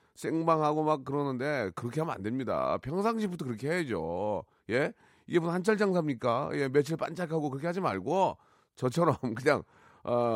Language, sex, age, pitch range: Korean, male, 40-59, 130-185 Hz